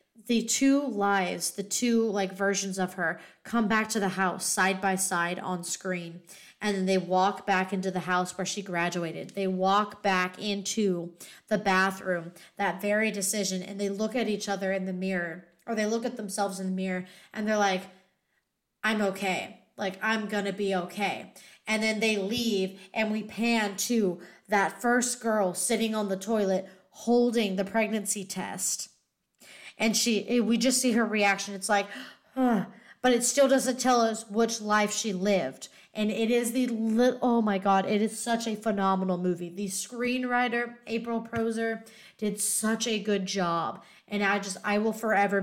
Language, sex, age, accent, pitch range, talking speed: English, female, 20-39, American, 190-225 Hz, 180 wpm